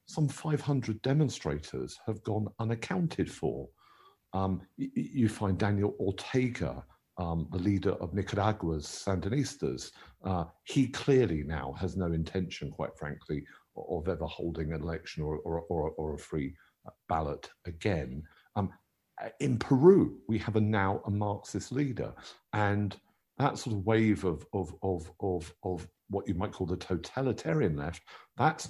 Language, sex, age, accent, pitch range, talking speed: English, male, 50-69, British, 85-115 Hz, 145 wpm